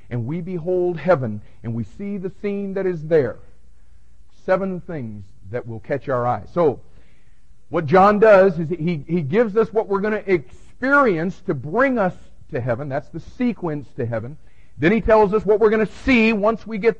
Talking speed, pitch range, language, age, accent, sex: 195 wpm, 110-160 Hz, English, 50-69, American, male